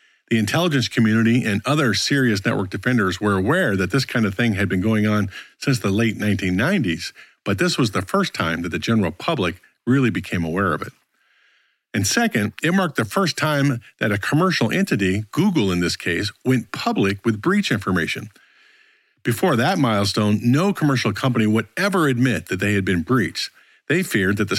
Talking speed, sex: 185 wpm, male